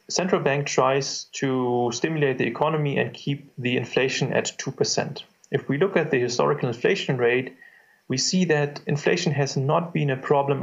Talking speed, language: 170 wpm, Dutch